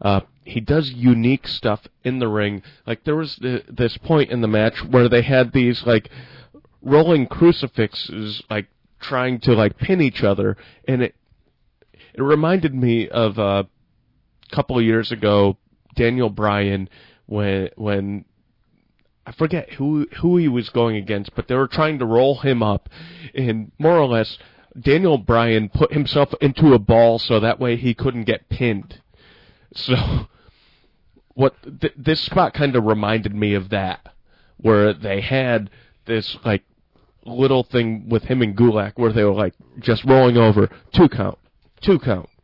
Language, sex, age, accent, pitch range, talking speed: English, male, 30-49, American, 105-135 Hz, 160 wpm